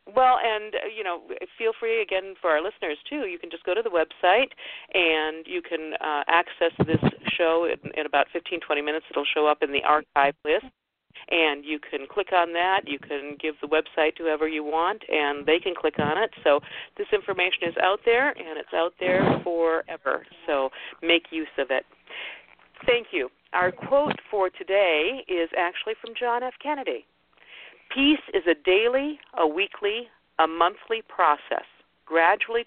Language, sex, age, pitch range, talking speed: English, female, 50-69, 150-210 Hz, 180 wpm